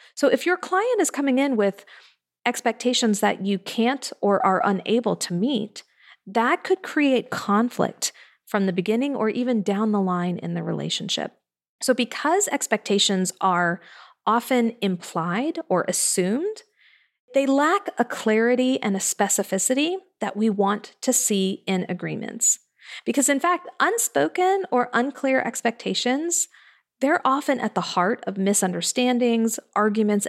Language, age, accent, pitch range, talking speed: English, 40-59, American, 195-260 Hz, 135 wpm